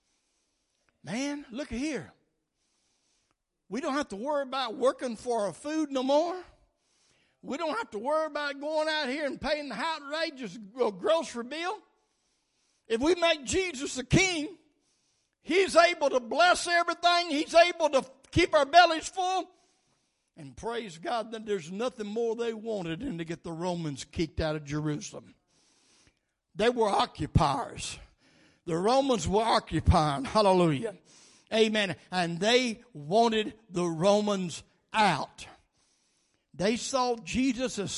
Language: English